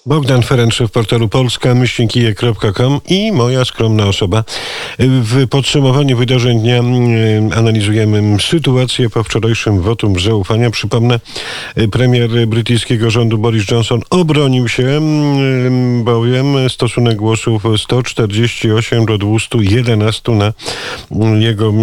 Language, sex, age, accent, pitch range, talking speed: Polish, male, 50-69, native, 105-125 Hz, 105 wpm